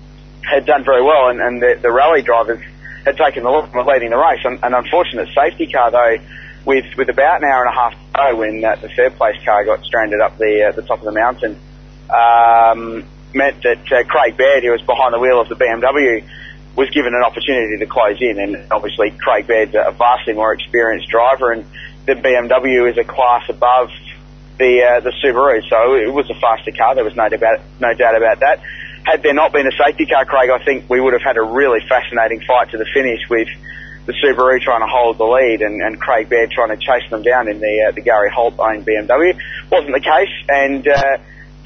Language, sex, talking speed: English, male, 225 wpm